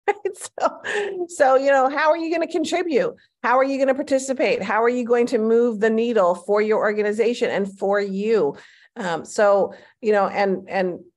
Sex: female